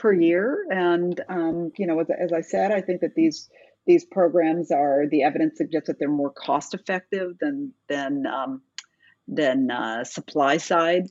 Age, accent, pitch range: 50-69, American, 155-255 Hz